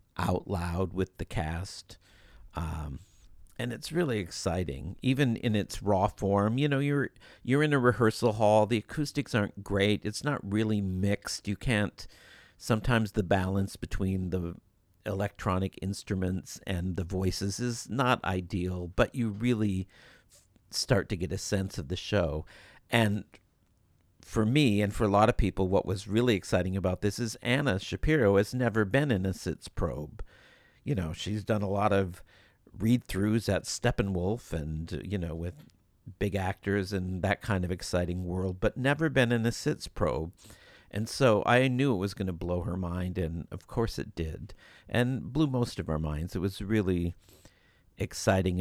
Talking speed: 170 wpm